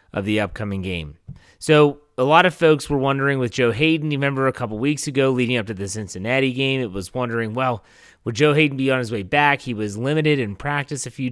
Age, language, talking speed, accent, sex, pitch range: 30-49, English, 240 wpm, American, male, 110-130 Hz